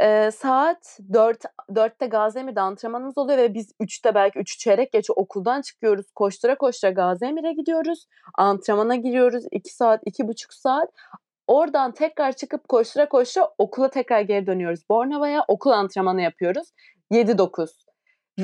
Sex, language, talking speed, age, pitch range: female, Turkish, 140 wpm, 30-49, 210-290 Hz